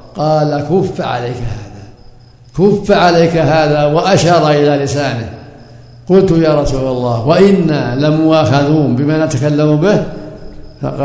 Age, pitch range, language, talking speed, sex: 60-79, 135-165 Hz, Arabic, 110 wpm, male